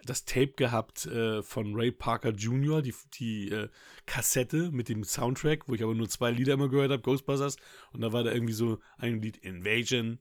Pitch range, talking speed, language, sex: 115-135 Hz, 200 wpm, German, male